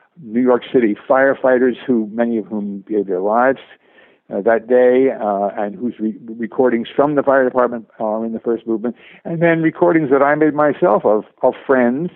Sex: male